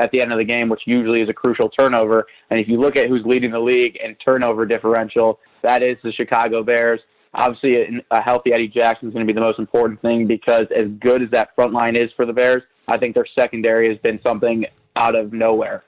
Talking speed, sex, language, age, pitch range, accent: 240 wpm, male, English, 20-39, 115-135 Hz, American